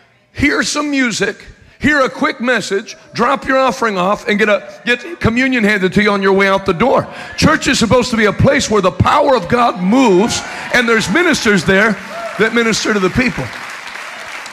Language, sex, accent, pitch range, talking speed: English, male, American, 185-250 Hz, 195 wpm